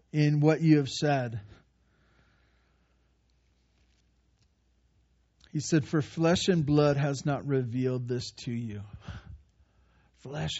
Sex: male